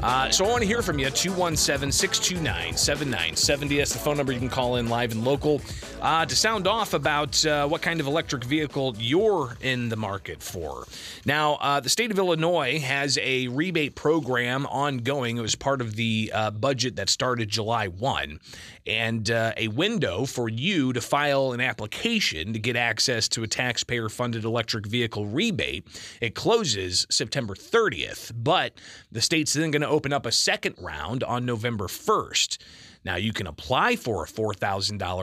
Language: English